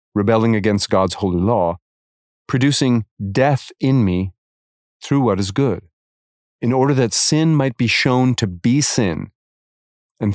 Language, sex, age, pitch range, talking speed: English, male, 40-59, 90-125 Hz, 140 wpm